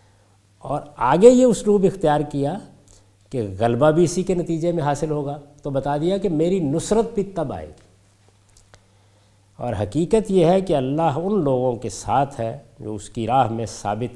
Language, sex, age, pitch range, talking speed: Urdu, male, 50-69, 100-165 Hz, 180 wpm